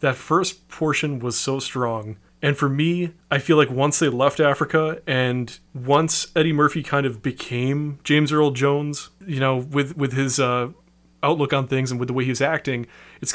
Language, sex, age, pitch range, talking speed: English, male, 30-49, 135-165 Hz, 195 wpm